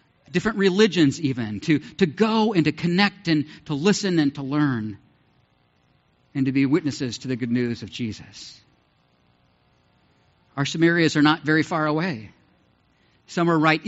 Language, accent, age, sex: English, American, 50-69, male